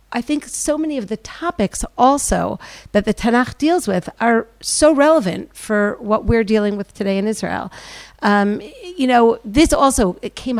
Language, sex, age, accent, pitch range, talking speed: English, female, 50-69, American, 200-285 Hz, 170 wpm